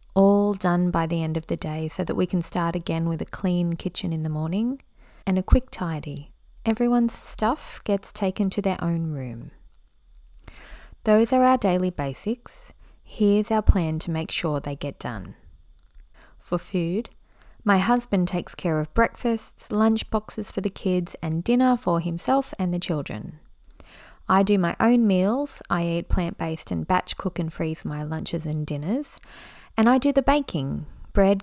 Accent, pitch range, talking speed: Australian, 165-225 Hz, 170 wpm